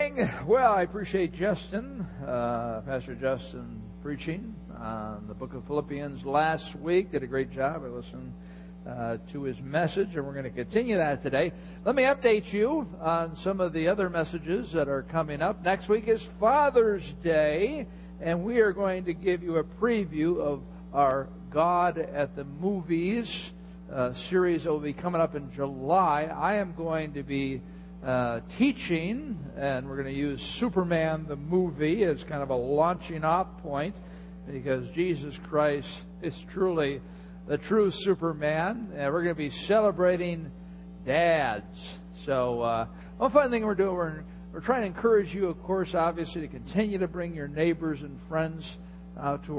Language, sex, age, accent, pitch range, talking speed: English, male, 60-79, American, 145-185 Hz, 165 wpm